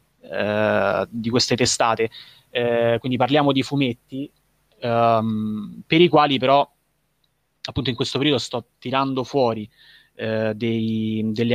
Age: 20-39